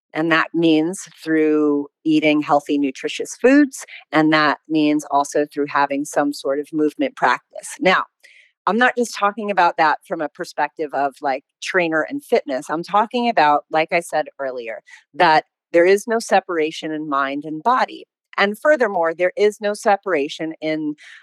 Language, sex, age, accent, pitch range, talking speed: English, female, 40-59, American, 155-200 Hz, 160 wpm